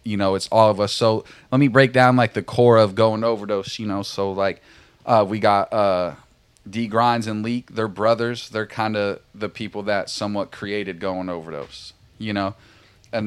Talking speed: 200 wpm